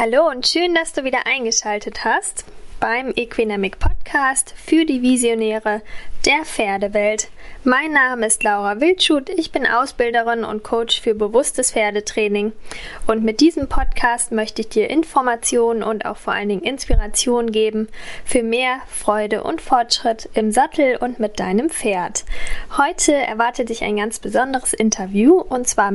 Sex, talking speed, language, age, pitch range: female, 150 wpm, German, 10-29, 215-270 Hz